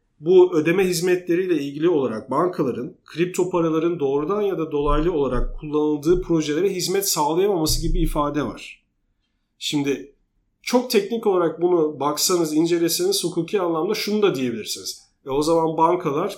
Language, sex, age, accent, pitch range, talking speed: Turkish, male, 40-59, native, 130-175 Hz, 130 wpm